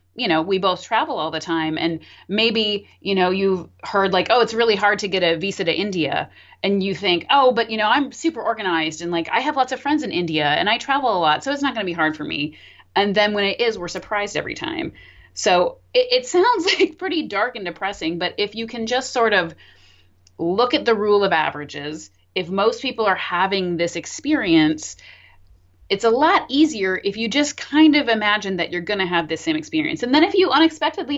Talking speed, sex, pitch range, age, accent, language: 225 wpm, female, 170-255 Hz, 30-49, American, English